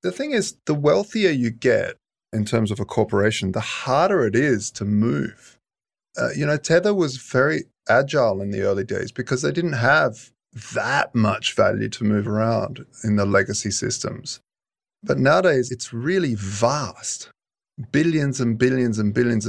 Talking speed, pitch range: 165 wpm, 110-135 Hz